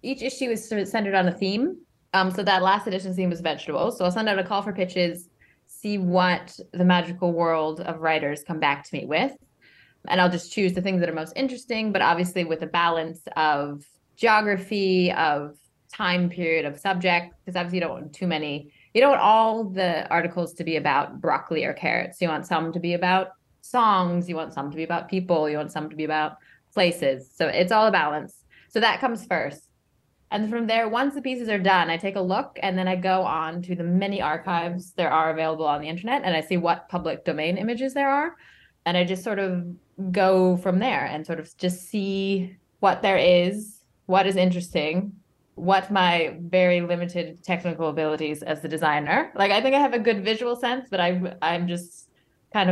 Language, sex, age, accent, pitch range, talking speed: English, female, 20-39, American, 165-200 Hz, 210 wpm